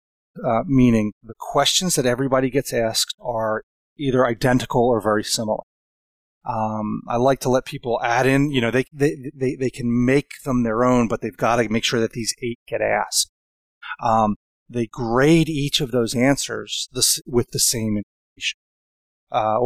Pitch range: 110-130 Hz